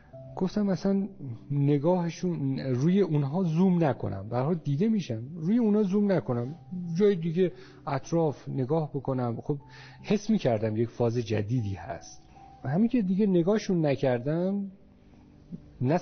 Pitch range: 130-175 Hz